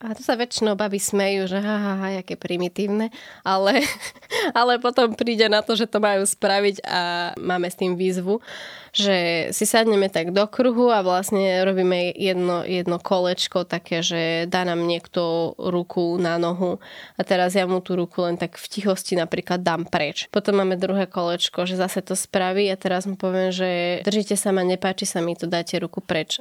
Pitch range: 180-200 Hz